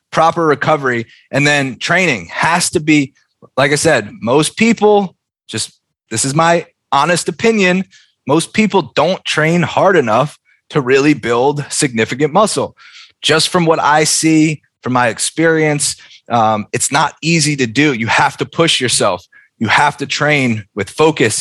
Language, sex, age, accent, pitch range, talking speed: English, male, 20-39, American, 130-175 Hz, 155 wpm